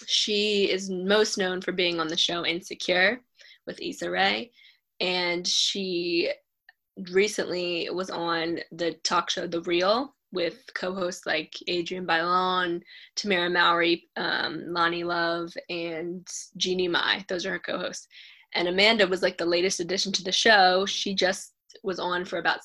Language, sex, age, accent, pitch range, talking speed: English, female, 10-29, American, 180-210 Hz, 150 wpm